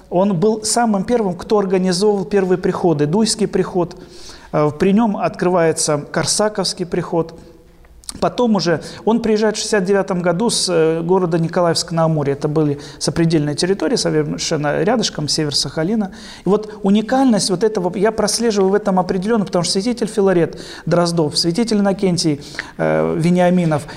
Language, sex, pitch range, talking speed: Russian, male, 160-205 Hz, 130 wpm